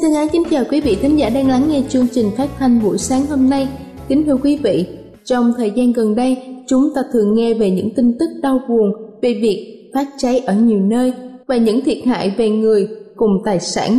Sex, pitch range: female, 220-275 Hz